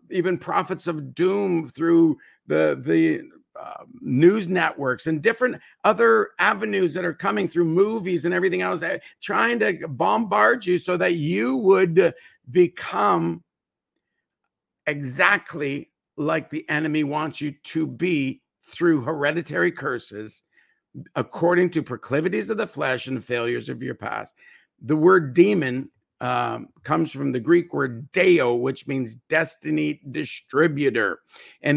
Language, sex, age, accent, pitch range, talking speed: English, male, 50-69, American, 145-195 Hz, 130 wpm